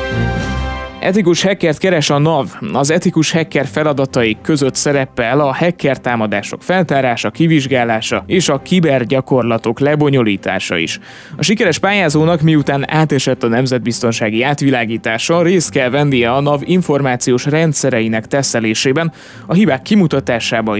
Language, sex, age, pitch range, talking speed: Hungarian, male, 20-39, 120-160 Hz, 115 wpm